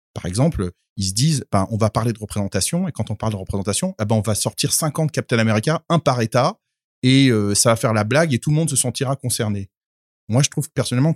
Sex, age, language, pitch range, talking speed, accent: male, 30-49, French, 105-145 Hz, 245 wpm, French